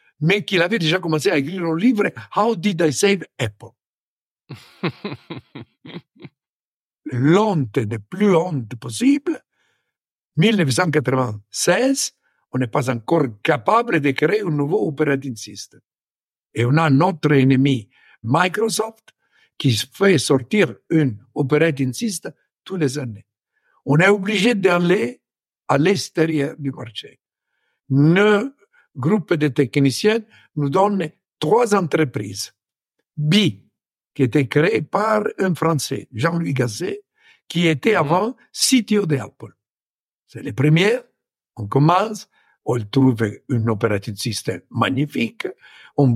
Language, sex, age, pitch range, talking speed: French, male, 60-79, 125-185 Hz, 115 wpm